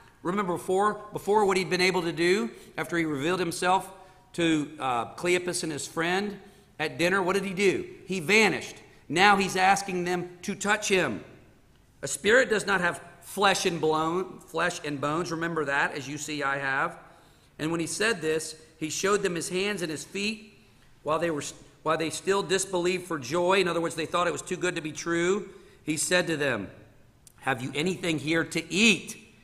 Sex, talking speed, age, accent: male, 200 wpm, 50-69, American